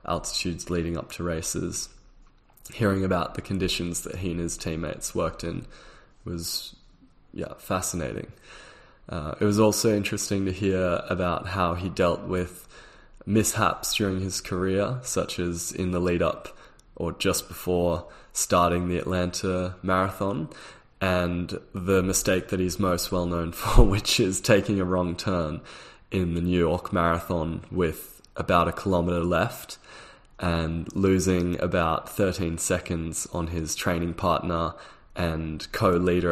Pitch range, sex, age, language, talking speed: 85-95 Hz, male, 20-39, English, 140 wpm